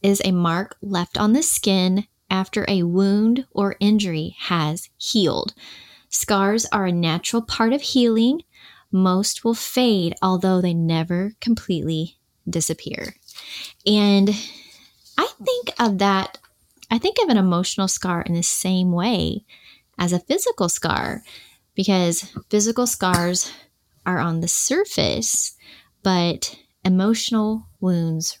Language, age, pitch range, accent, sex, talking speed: English, 20-39, 170-205 Hz, American, female, 125 wpm